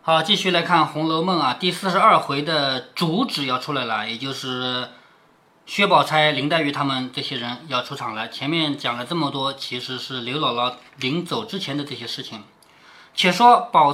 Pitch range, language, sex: 145-235 Hz, Chinese, male